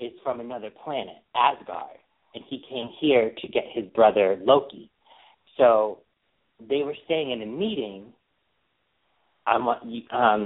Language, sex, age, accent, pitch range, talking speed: English, male, 40-59, American, 110-145 Hz, 140 wpm